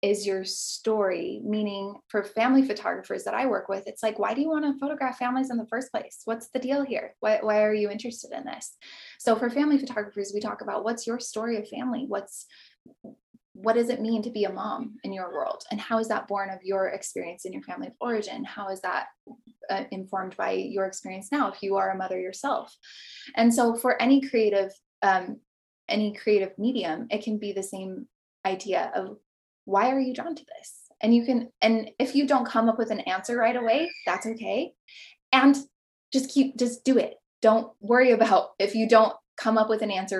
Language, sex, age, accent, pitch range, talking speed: English, female, 10-29, American, 195-245 Hz, 210 wpm